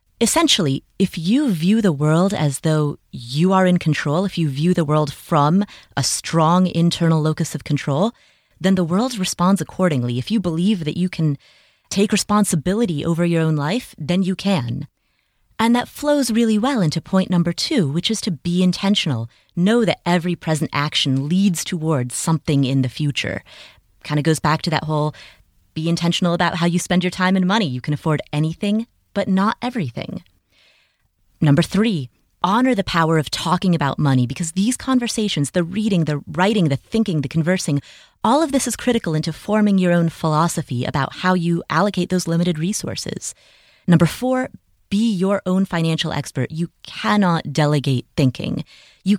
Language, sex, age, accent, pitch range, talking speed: English, female, 30-49, American, 150-195 Hz, 175 wpm